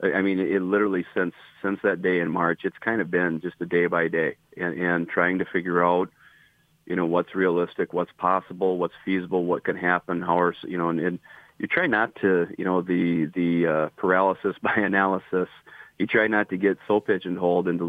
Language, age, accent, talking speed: English, 40-59, American, 205 wpm